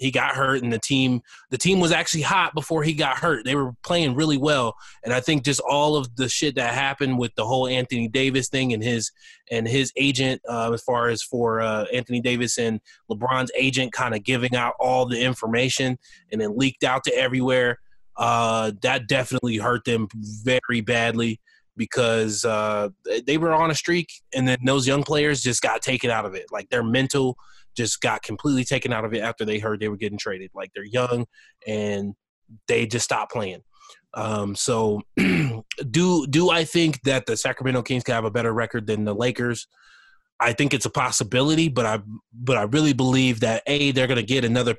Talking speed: 205 wpm